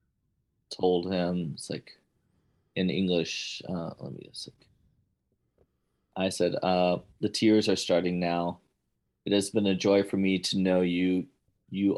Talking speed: 150 wpm